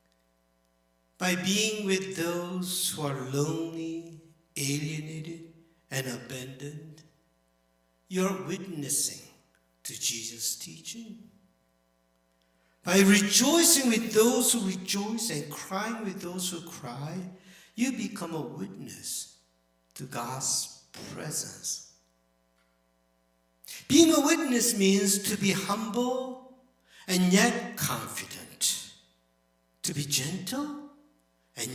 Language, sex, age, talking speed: English, male, 60-79, 90 wpm